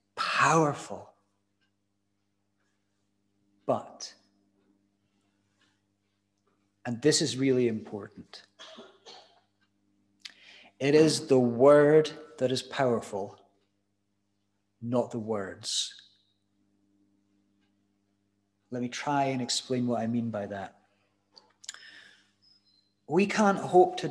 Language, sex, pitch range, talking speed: English, male, 100-135 Hz, 75 wpm